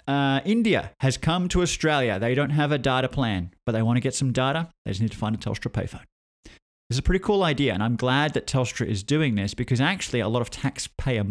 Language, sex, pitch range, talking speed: English, male, 105-135 Hz, 250 wpm